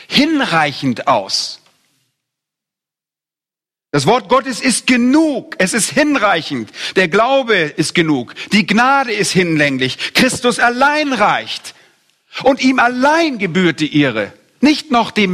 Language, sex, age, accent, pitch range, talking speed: German, male, 50-69, German, 140-205 Hz, 115 wpm